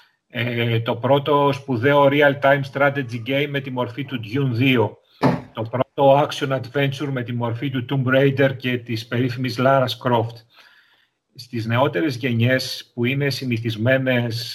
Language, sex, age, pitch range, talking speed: Greek, male, 40-59, 115-135 Hz, 135 wpm